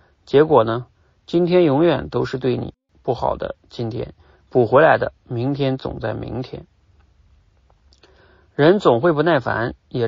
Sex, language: male, Chinese